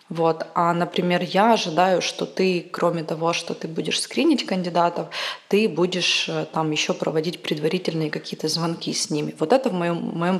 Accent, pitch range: native, 165-190 Hz